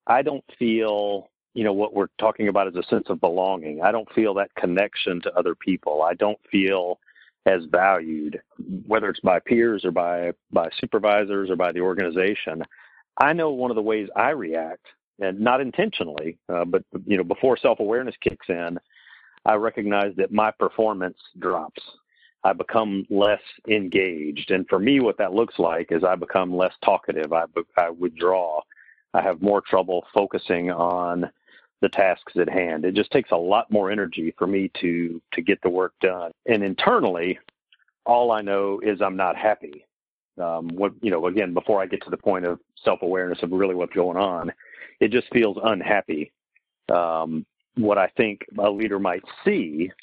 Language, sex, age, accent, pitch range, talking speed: English, male, 50-69, American, 85-105 Hz, 180 wpm